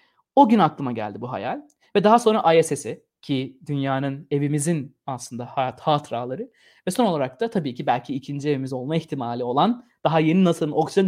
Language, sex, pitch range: Turkish, male, 130-180 Hz